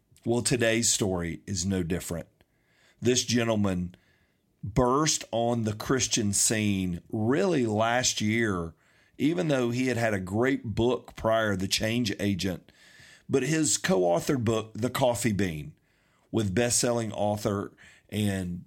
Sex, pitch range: male, 100-125 Hz